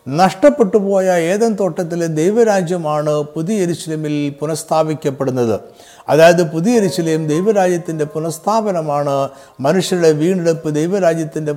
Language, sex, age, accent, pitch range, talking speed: Malayalam, male, 60-79, native, 150-190 Hz, 85 wpm